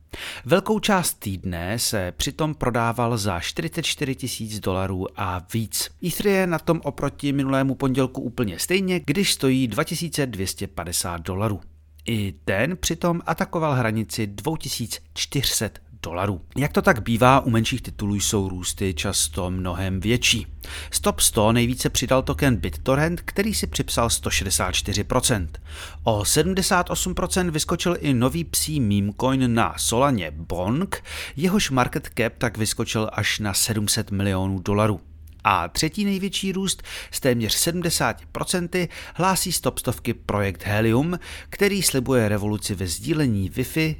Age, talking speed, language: 40-59, 125 wpm, Czech